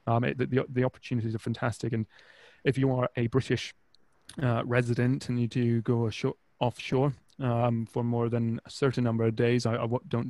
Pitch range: 115-125 Hz